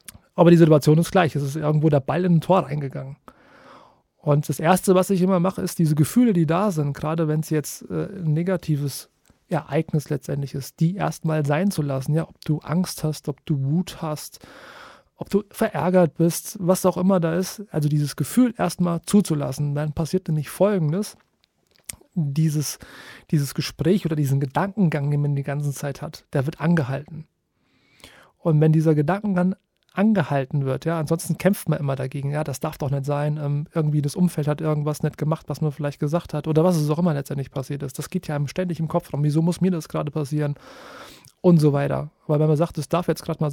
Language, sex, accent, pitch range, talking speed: German, male, German, 145-175 Hz, 205 wpm